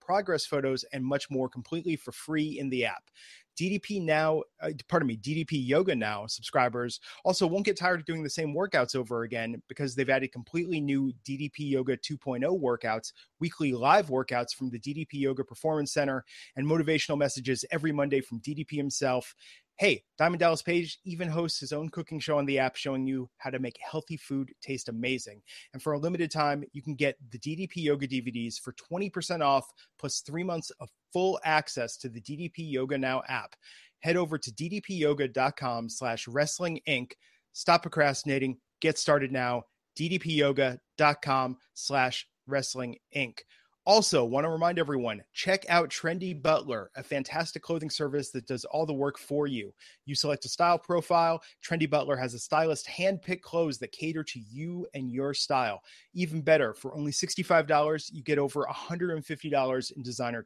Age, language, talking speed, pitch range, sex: 30-49, English, 165 wpm, 130-160 Hz, male